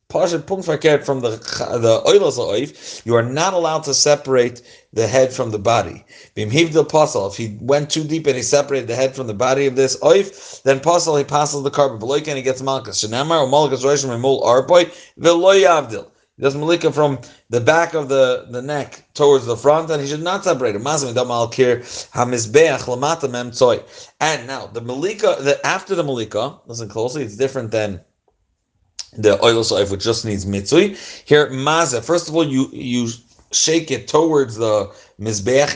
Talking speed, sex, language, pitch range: 150 wpm, male, English, 120-150 Hz